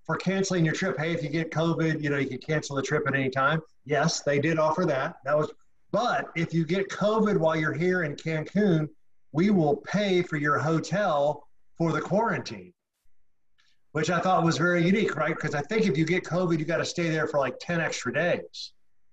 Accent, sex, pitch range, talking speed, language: American, male, 140-175 Hz, 215 wpm, English